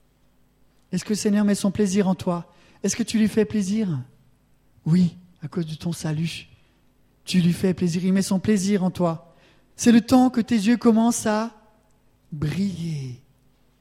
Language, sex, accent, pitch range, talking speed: French, male, French, 175-255 Hz, 175 wpm